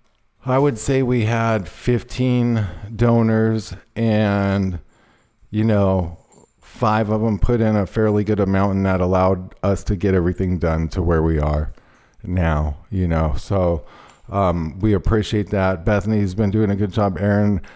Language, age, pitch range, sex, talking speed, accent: English, 50-69, 95-110 Hz, male, 155 wpm, American